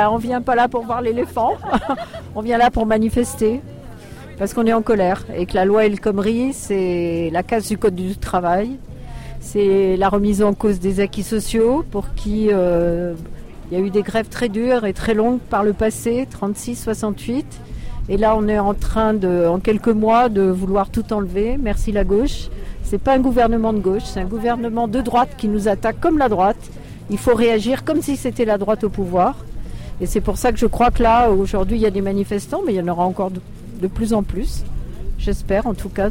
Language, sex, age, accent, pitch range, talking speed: French, female, 50-69, French, 195-235 Hz, 215 wpm